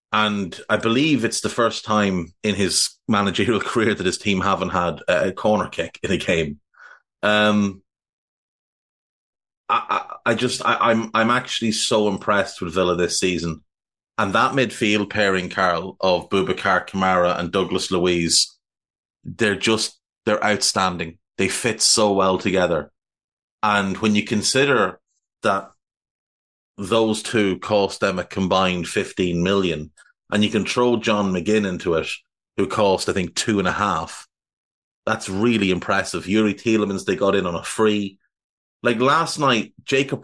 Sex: male